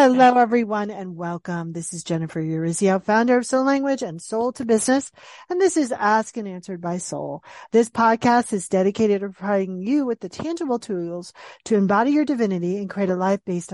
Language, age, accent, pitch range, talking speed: English, 40-59, American, 190-245 Hz, 190 wpm